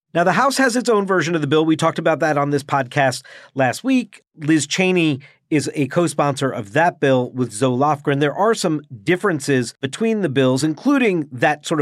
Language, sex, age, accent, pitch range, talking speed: English, male, 40-59, American, 130-165 Hz, 205 wpm